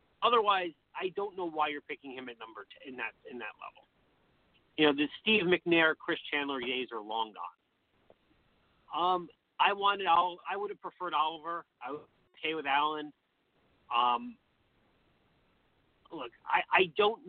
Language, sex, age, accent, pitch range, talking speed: English, male, 40-59, American, 140-185 Hz, 155 wpm